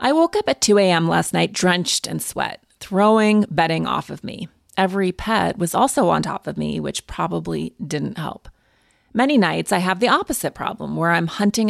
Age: 30-49